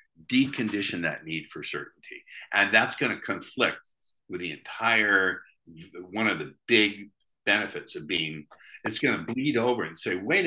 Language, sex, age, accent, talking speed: Hebrew, male, 60-79, American, 160 wpm